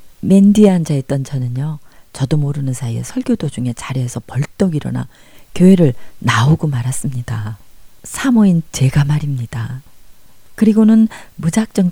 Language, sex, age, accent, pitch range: Korean, female, 40-59, native, 130-180 Hz